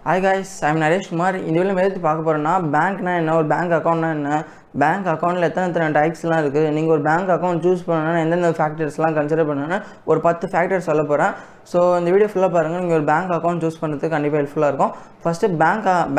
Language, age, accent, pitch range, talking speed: Tamil, 20-39, native, 160-195 Hz, 195 wpm